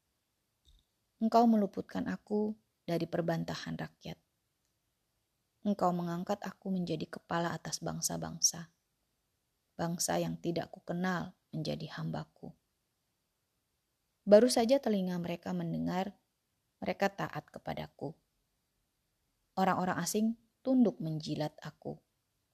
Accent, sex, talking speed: native, female, 90 wpm